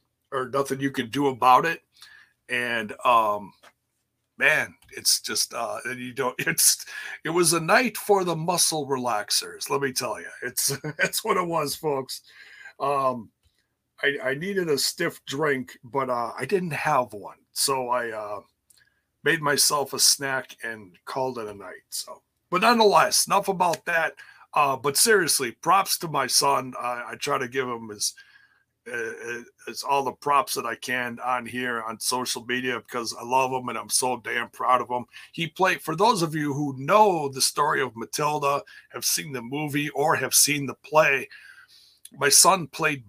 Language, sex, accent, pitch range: English, male, American, 125-170 Hz